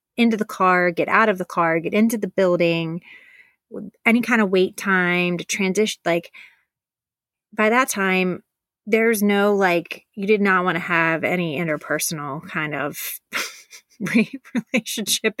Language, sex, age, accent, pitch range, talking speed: English, female, 30-49, American, 165-205 Hz, 145 wpm